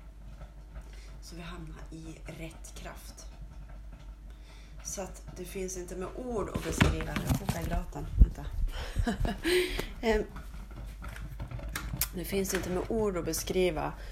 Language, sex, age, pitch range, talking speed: Swedish, female, 30-49, 110-180 Hz, 95 wpm